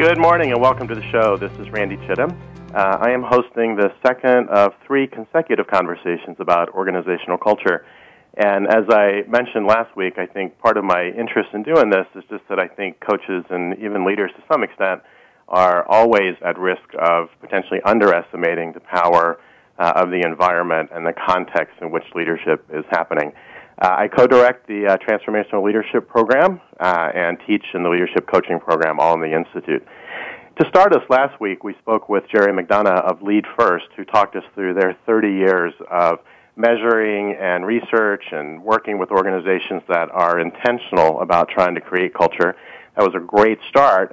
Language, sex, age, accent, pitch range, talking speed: English, male, 40-59, American, 90-115 Hz, 180 wpm